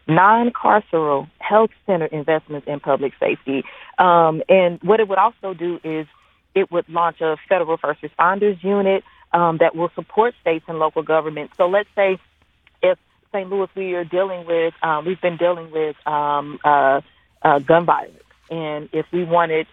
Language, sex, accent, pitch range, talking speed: English, female, American, 155-190 Hz, 165 wpm